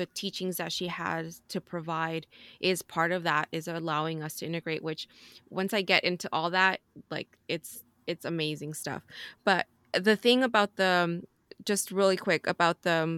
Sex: female